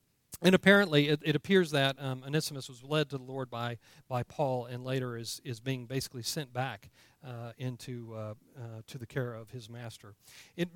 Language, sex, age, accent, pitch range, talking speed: English, male, 40-59, American, 140-200 Hz, 195 wpm